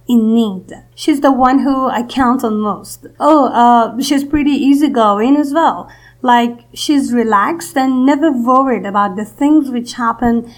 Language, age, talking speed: English, 30-49, 160 wpm